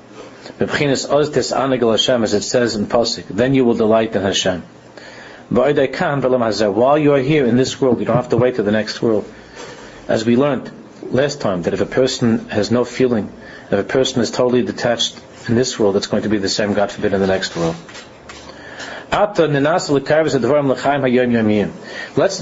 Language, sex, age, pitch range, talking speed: English, male, 40-59, 115-135 Hz, 165 wpm